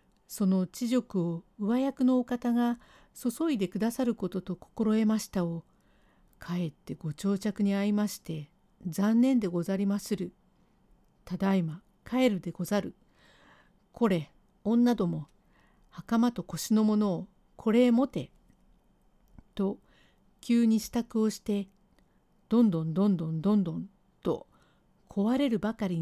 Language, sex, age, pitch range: Japanese, female, 50-69, 175-235 Hz